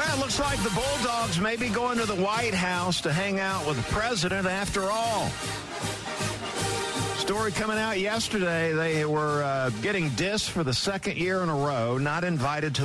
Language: English